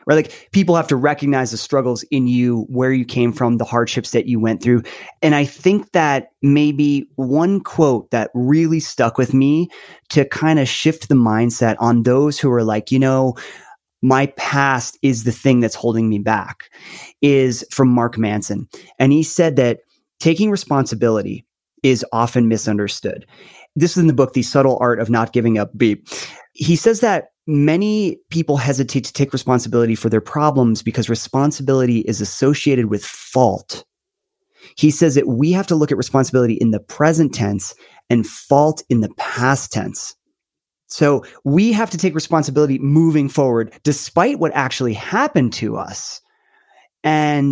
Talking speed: 165 wpm